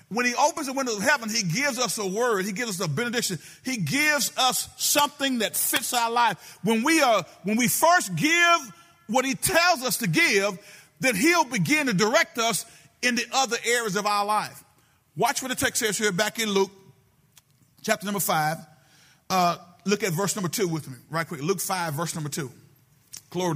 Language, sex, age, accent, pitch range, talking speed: English, male, 40-59, American, 160-225 Hz, 200 wpm